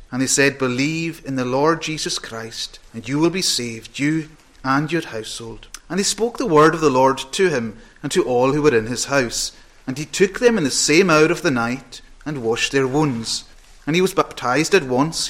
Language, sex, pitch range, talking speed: English, male, 125-165 Hz, 225 wpm